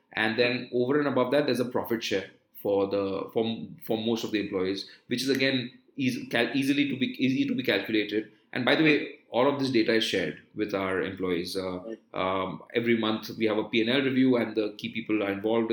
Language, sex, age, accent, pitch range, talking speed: English, male, 30-49, Indian, 105-125 Hz, 220 wpm